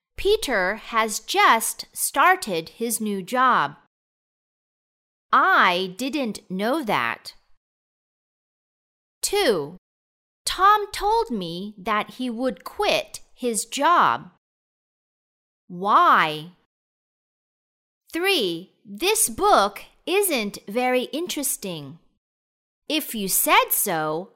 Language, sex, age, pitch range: Thai, female, 40-59, 190-315 Hz